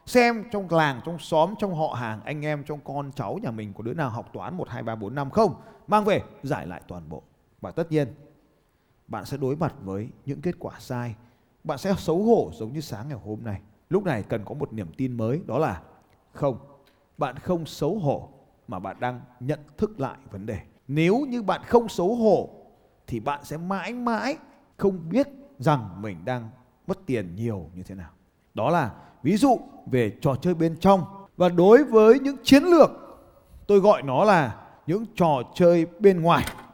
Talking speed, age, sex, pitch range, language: 200 wpm, 20-39, male, 140-230 Hz, Vietnamese